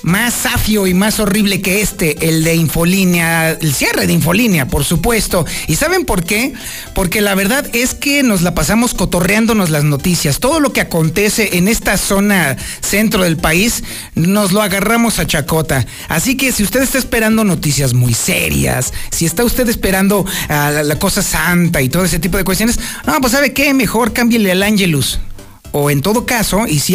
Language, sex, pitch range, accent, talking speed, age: Spanish, male, 160-225 Hz, Mexican, 185 wpm, 40-59